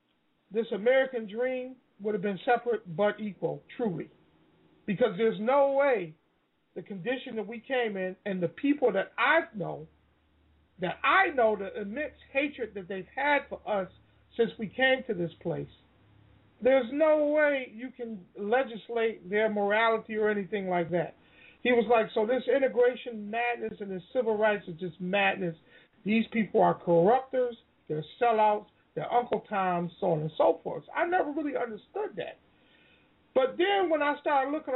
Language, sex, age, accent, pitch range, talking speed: English, male, 50-69, American, 195-260 Hz, 160 wpm